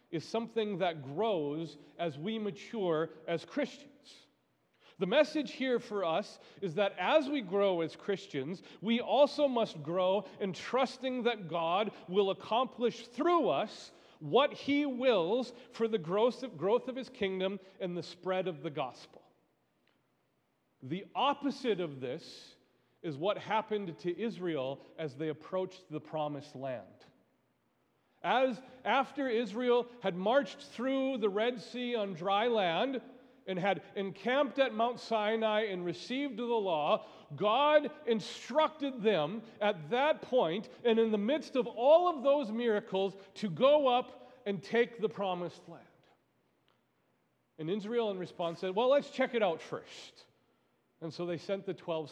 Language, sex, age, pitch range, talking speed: English, male, 40-59, 175-250 Hz, 145 wpm